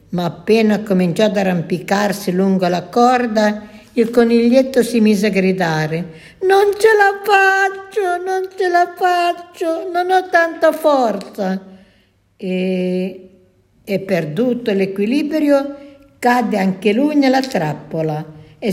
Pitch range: 190-280 Hz